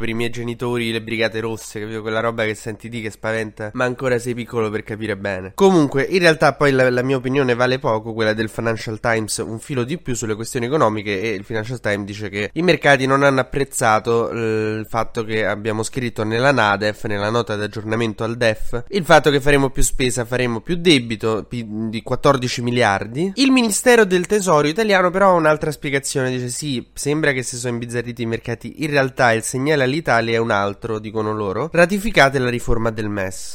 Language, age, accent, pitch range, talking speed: Italian, 20-39, native, 115-140 Hz, 200 wpm